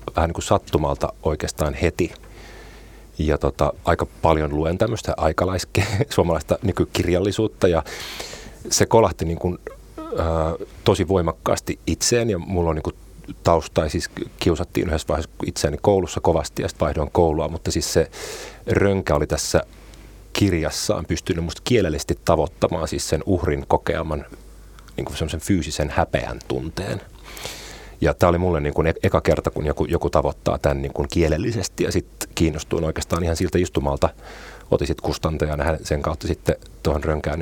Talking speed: 145 wpm